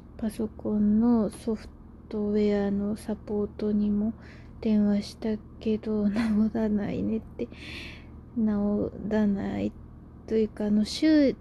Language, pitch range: Japanese, 210-230 Hz